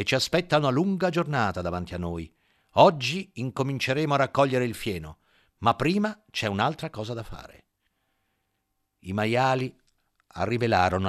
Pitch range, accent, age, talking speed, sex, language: 95-135 Hz, native, 50-69, 130 wpm, male, Italian